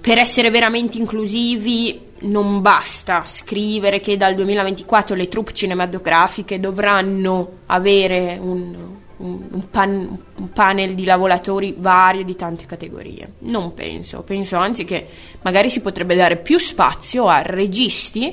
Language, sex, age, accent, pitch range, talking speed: Italian, female, 20-39, native, 175-225 Hz, 130 wpm